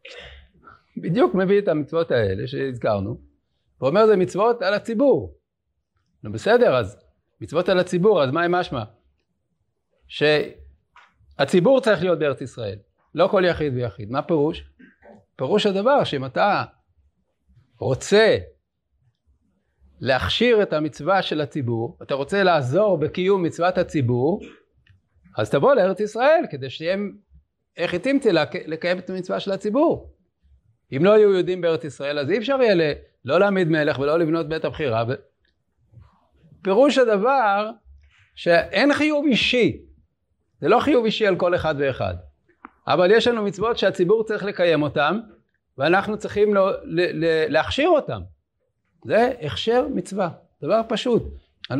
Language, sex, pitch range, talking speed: Hebrew, male, 135-210 Hz, 130 wpm